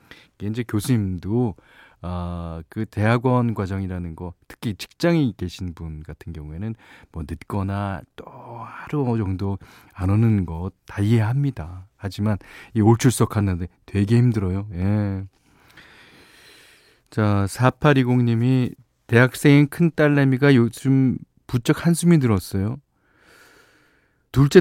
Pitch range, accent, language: 95-130 Hz, native, Korean